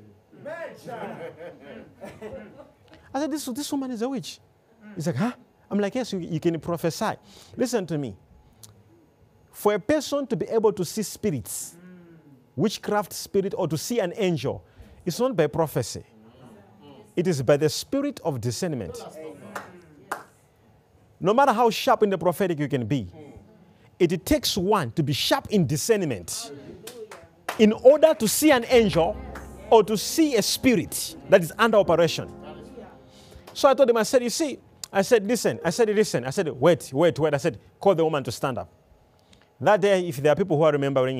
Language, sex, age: English, male, 40-59